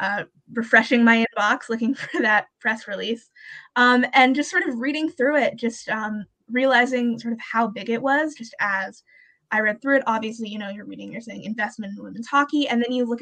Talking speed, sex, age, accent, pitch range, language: 215 wpm, female, 20-39, American, 210-245 Hz, English